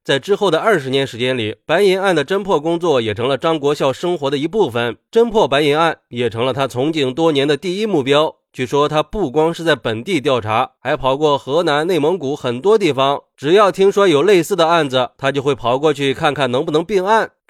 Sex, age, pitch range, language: male, 20-39, 135-185 Hz, Chinese